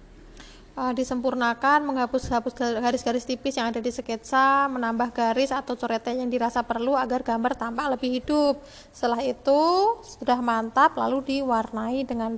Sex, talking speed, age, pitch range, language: female, 130 wpm, 20-39, 245-280 Hz, Indonesian